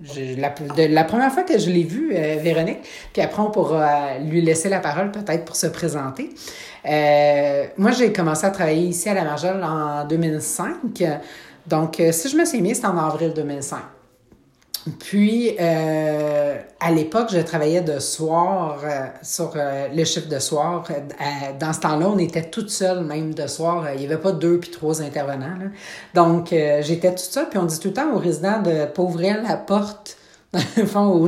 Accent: Canadian